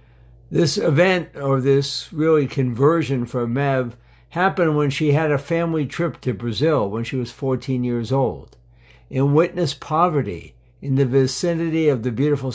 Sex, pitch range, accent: male, 120-155 Hz, American